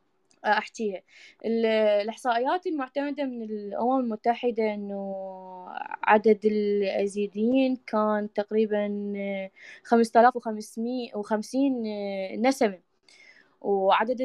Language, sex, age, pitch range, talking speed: Arabic, female, 20-39, 205-240 Hz, 65 wpm